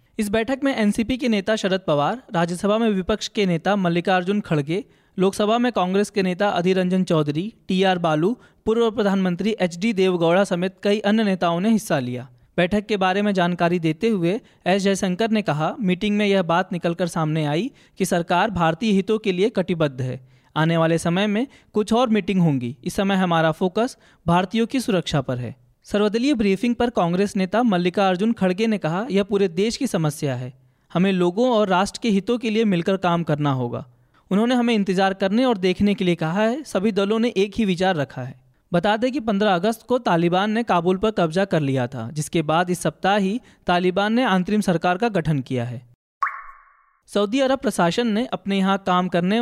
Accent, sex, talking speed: native, male, 195 wpm